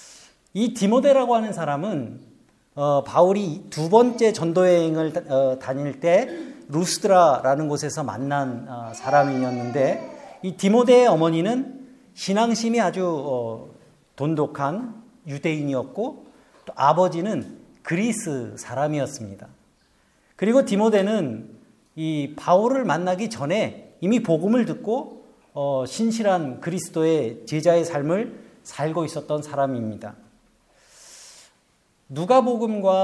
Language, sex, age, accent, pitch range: Korean, male, 40-59, native, 145-215 Hz